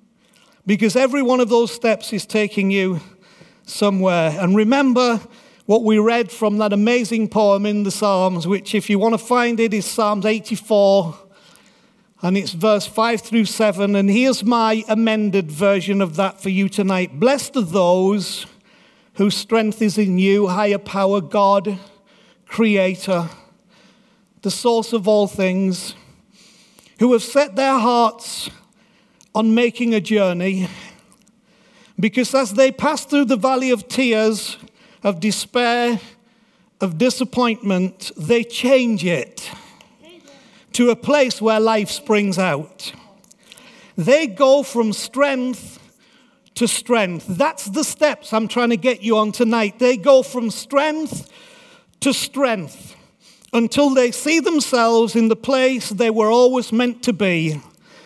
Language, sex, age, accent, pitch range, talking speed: English, male, 50-69, British, 200-245 Hz, 135 wpm